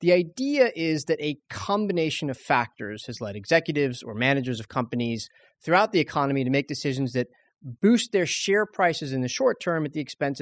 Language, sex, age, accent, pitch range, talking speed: English, male, 30-49, American, 115-155 Hz, 190 wpm